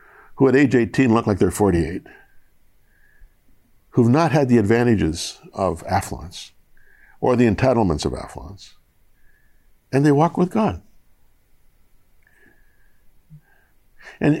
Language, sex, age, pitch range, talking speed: English, male, 60-79, 85-120 Hz, 110 wpm